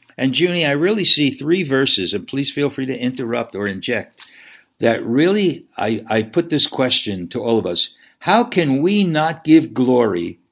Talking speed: 185 wpm